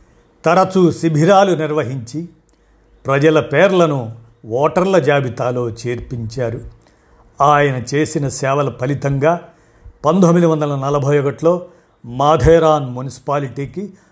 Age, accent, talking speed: 50-69, native, 65 wpm